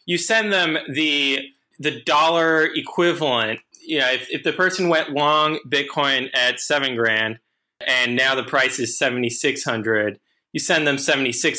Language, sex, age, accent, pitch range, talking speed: English, male, 20-39, American, 125-165 Hz, 170 wpm